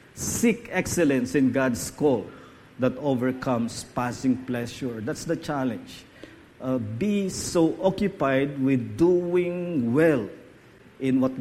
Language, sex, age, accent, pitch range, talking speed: English, male, 50-69, Filipino, 125-155 Hz, 110 wpm